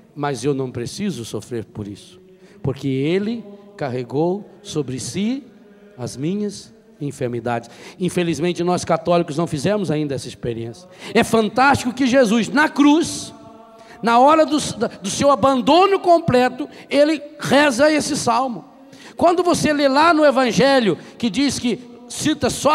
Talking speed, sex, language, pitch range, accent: 135 wpm, male, Portuguese, 190-270 Hz, Brazilian